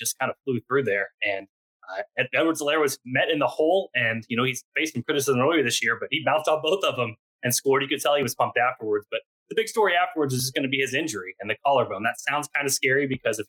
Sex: male